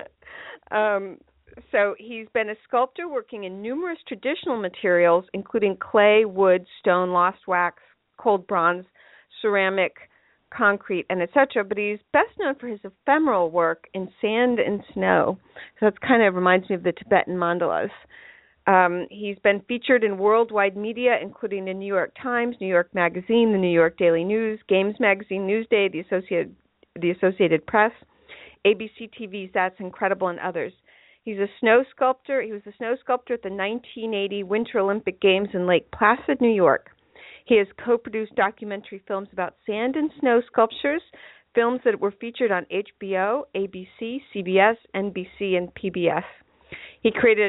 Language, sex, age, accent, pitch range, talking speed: English, female, 50-69, American, 190-235 Hz, 155 wpm